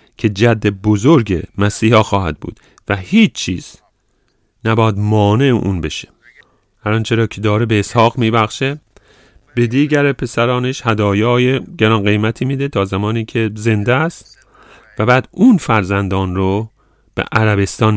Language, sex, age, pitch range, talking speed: English, male, 40-59, 100-125 Hz, 135 wpm